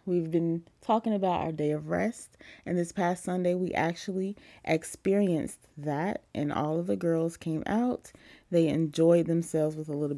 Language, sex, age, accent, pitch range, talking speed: English, female, 30-49, American, 155-195 Hz, 170 wpm